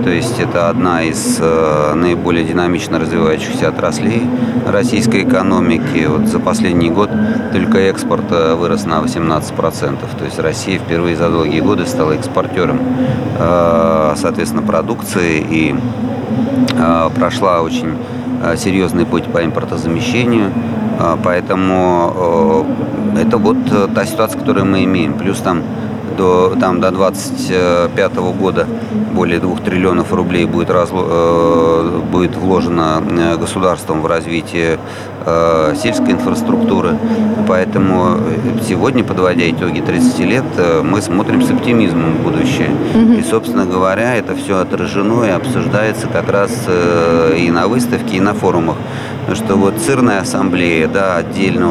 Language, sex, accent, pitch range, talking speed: Russian, male, native, 85-115 Hz, 125 wpm